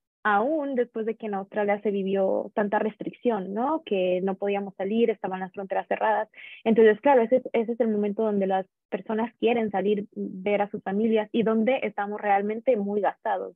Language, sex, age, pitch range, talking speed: Spanish, female, 20-39, 205-240 Hz, 185 wpm